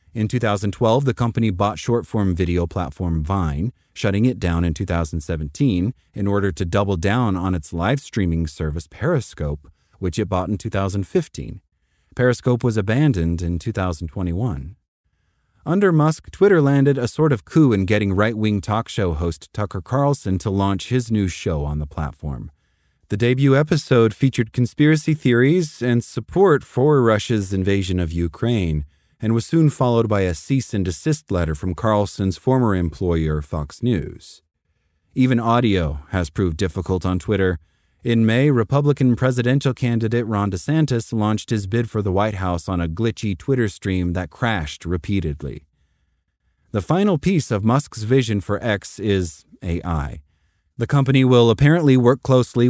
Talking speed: 150 wpm